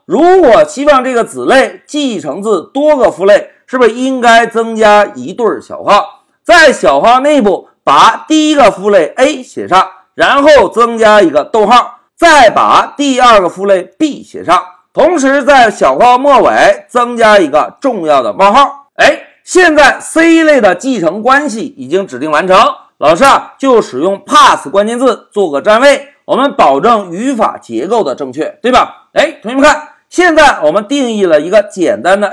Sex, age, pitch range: male, 50-69, 225-300 Hz